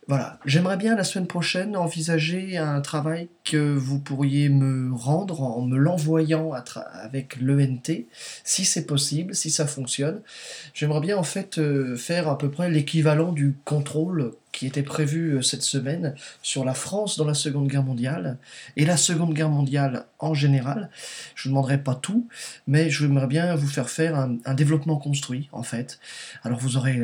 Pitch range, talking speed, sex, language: 130-160 Hz, 180 wpm, male, French